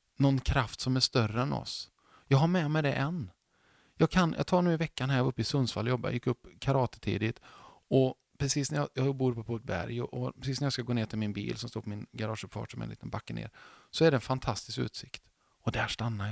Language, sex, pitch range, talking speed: Swedish, male, 105-130 Hz, 245 wpm